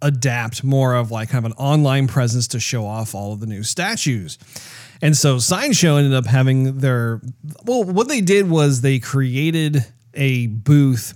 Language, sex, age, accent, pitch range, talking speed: English, male, 30-49, American, 115-150 Hz, 180 wpm